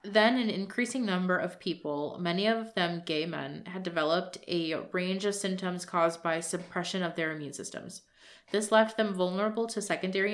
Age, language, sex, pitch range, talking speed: 20-39, English, female, 165-200 Hz, 175 wpm